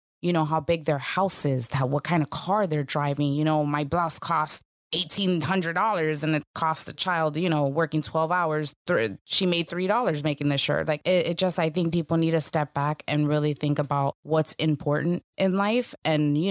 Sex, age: female, 20-39